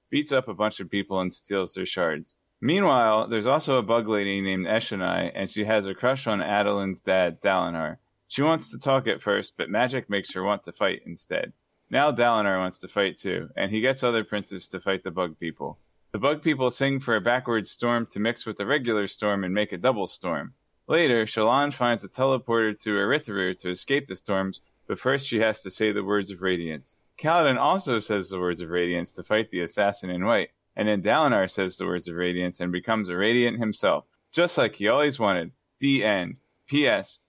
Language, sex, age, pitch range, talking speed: English, male, 30-49, 95-125 Hz, 210 wpm